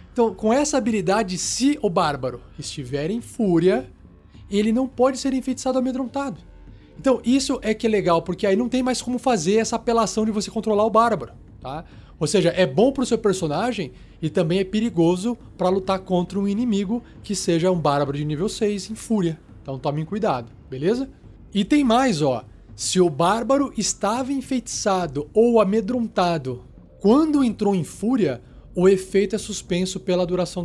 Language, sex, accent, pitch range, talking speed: Portuguese, male, Brazilian, 155-225 Hz, 175 wpm